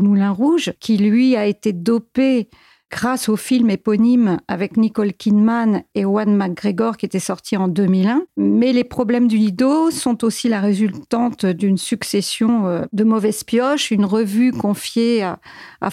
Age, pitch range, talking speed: 50-69, 200-245 Hz, 155 wpm